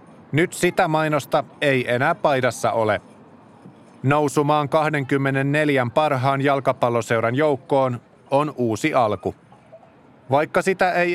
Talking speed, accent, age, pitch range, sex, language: 95 wpm, native, 30-49, 130-160 Hz, male, Finnish